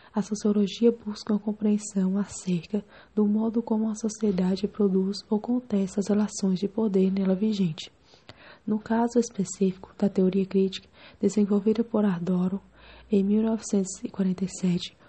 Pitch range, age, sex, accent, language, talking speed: 195-220 Hz, 20-39, female, Brazilian, English, 125 wpm